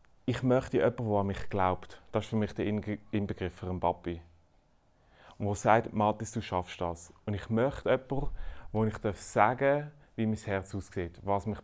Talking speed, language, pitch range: 190 wpm, German, 95-115 Hz